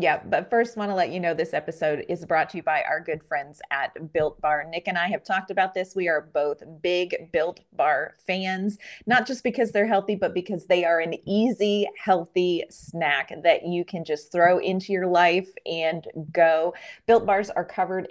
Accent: American